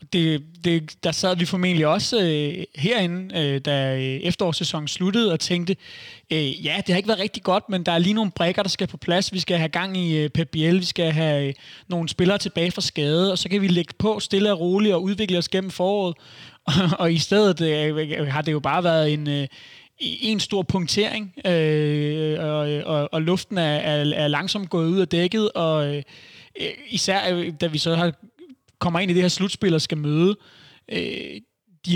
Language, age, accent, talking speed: Danish, 30-49, native, 210 wpm